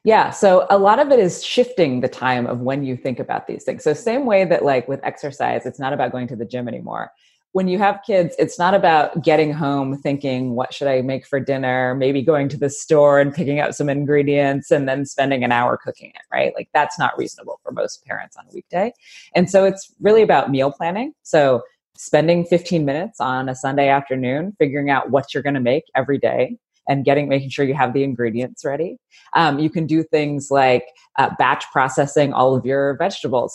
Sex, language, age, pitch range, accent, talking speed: female, English, 20-39, 135-160 Hz, American, 220 wpm